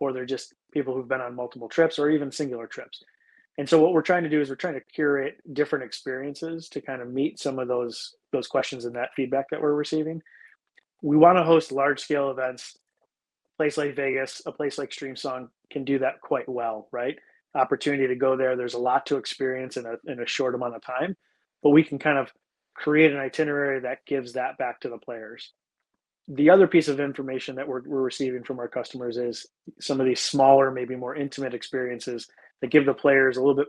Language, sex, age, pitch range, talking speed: English, male, 30-49, 130-150 Hz, 215 wpm